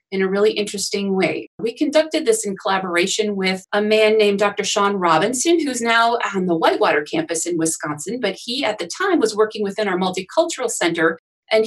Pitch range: 180-230 Hz